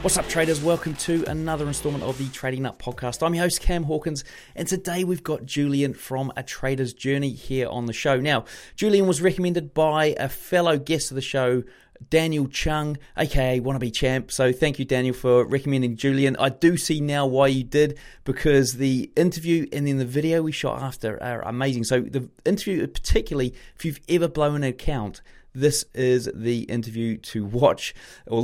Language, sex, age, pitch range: English, male, 30-49, 130-160 Hz